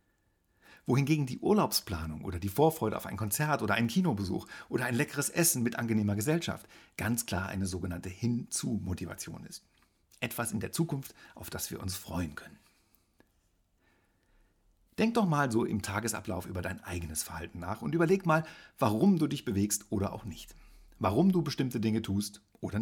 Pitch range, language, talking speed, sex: 95-135 Hz, German, 165 wpm, male